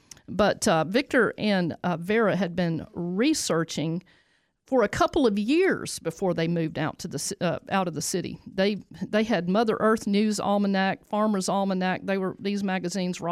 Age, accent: 50-69, American